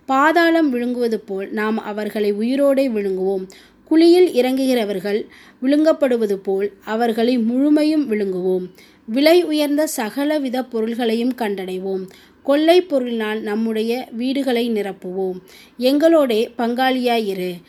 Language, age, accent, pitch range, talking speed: Tamil, 20-39, native, 210-275 Hz, 90 wpm